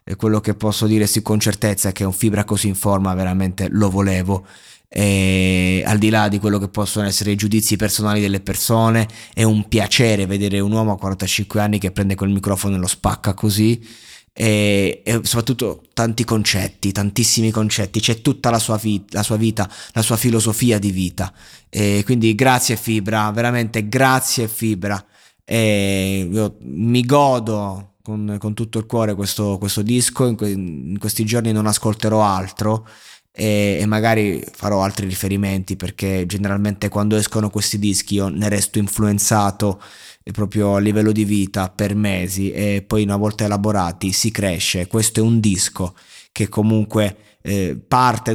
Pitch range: 100-110 Hz